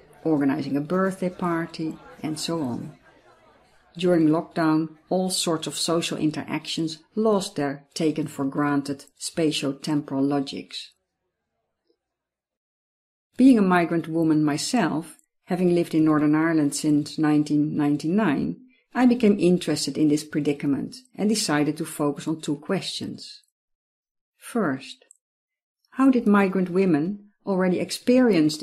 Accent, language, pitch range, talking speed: Dutch, English, 150-190 Hz, 110 wpm